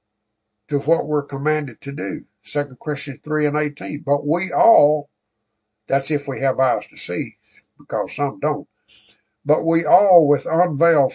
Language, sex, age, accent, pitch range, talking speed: English, male, 60-79, American, 120-175 Hz, 155 wpm